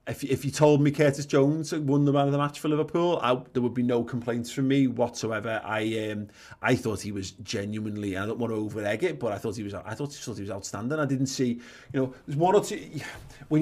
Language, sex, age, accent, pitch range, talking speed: English, male, 30-49, British, 110-140 Hz, 265 wpm